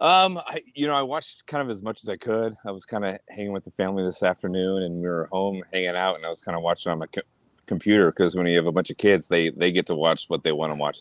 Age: 30-49